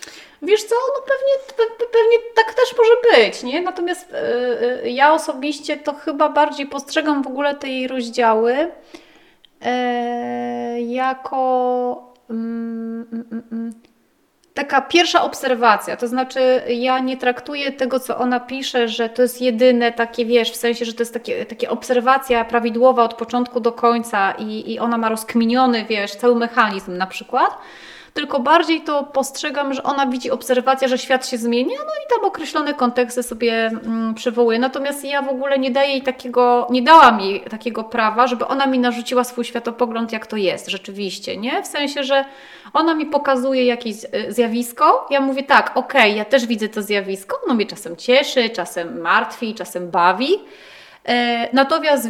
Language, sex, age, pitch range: Polish, female, 30-49, 235-285 Hz